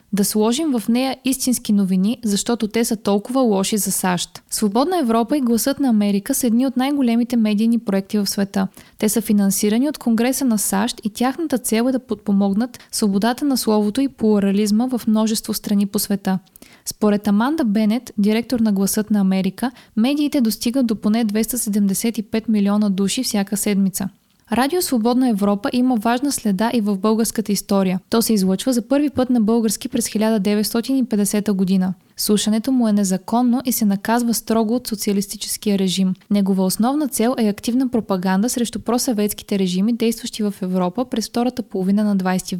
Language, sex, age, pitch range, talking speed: Bulgarian, female, 20-39, 205-245 Hz, 165 wpm